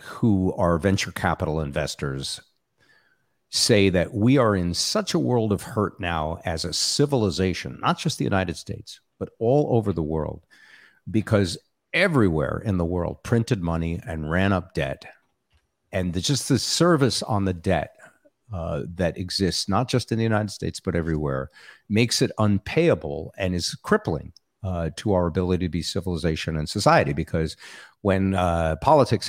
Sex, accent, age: male, American, 50-69